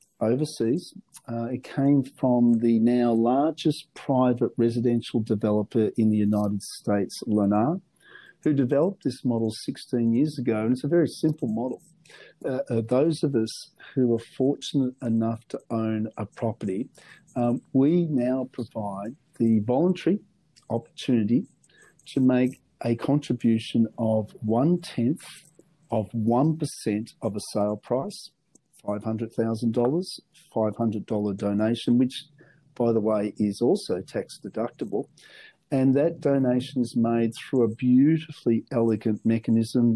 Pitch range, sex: 110-140 Hz, male